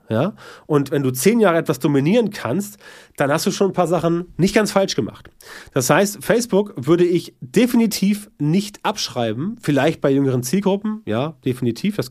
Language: German